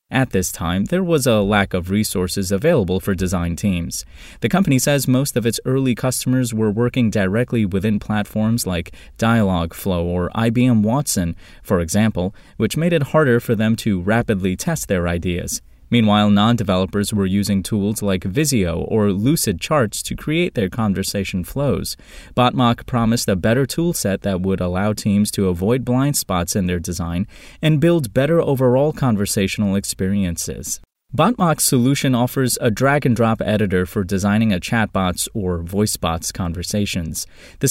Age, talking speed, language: 20-39, 155 wpm, English